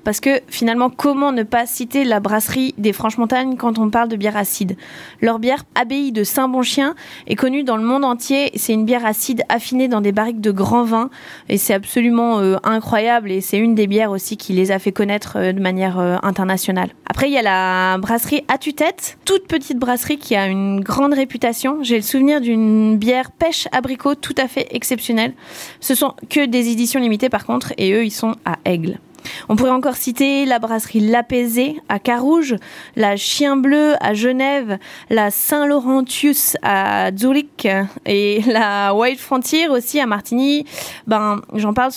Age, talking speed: 20-39, 185 wpm